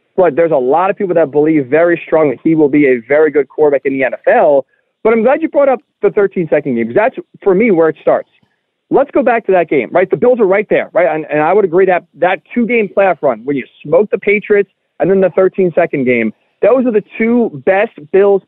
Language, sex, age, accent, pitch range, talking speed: English, male, 40-59, American, 165-250 Hz, 245 wpm